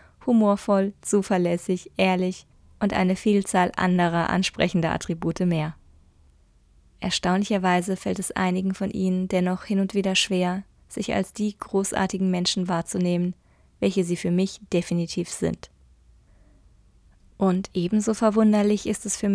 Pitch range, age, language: 175-200 Hz, 20-39, German